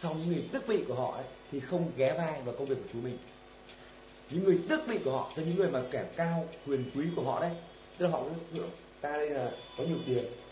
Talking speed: 250 wpm